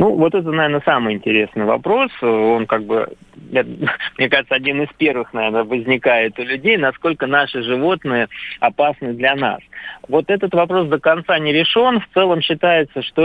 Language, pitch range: Russian, 125-165 Hz